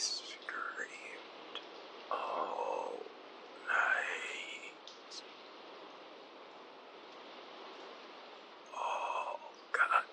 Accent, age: American, 60-79